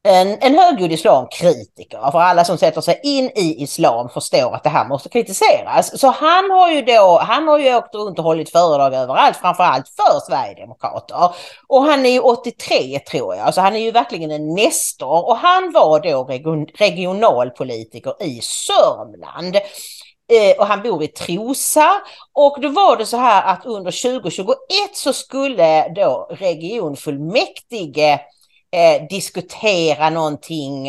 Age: 40-59